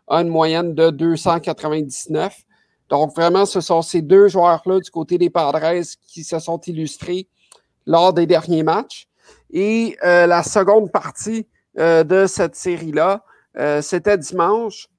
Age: 50-69